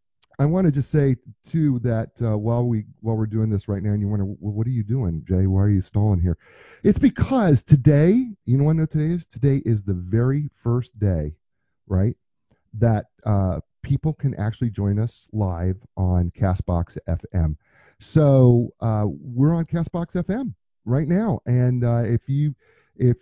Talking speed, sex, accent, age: 180 wpm, male, American, 40-59